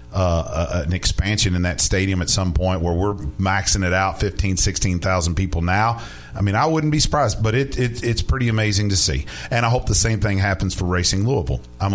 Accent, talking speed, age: American, 215 wpm, 40-59